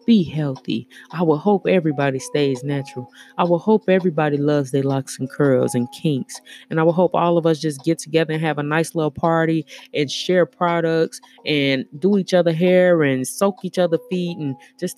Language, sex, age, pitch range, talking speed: English, female, 20-39, 140-185 Hz, 200 wpm